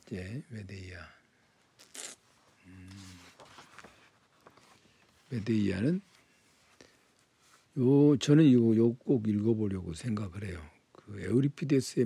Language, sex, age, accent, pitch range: Korean, male, 60-79, native, 95-140 Hz